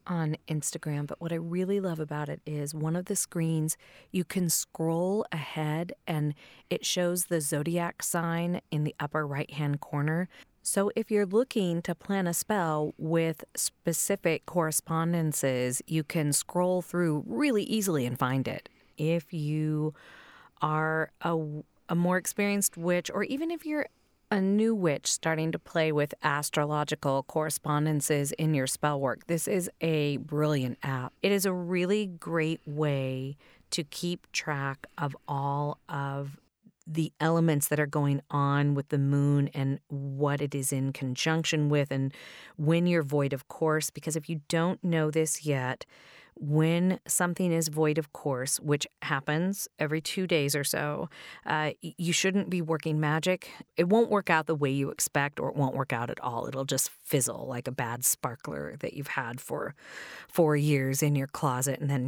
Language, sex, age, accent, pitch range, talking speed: English, female, 30-49, American, 145-170 Hz, 165 wpm